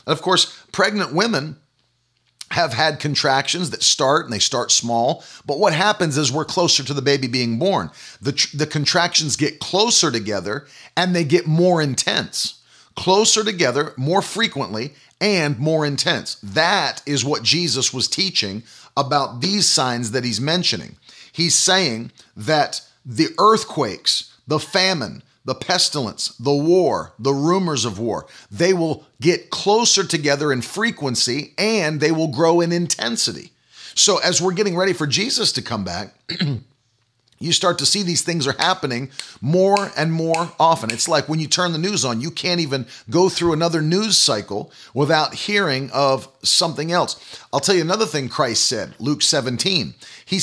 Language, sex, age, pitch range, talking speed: English, male, 40-59, 135-175 Hz, 160 wpm